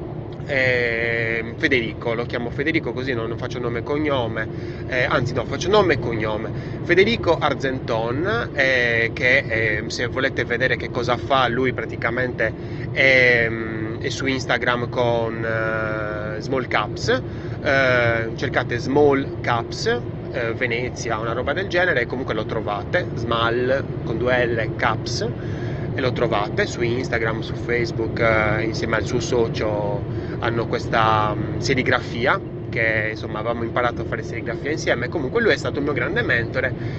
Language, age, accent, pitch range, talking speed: Italian, 20-39, native, 115-135 Hz, 145 wpm